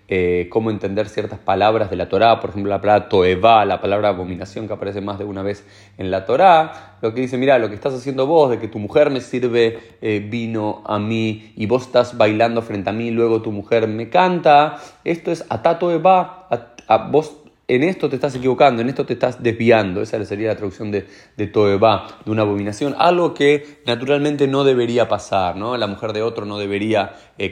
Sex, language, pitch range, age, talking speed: male, Spanish, 100-140 Hz, 30-49, 210 wpm